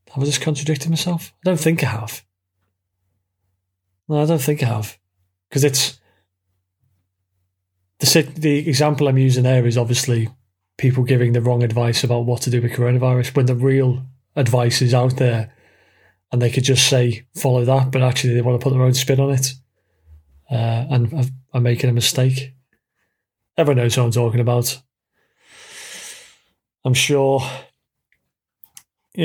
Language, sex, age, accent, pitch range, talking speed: English, male, 30-49, British, 115-140 Hz, 160 wpm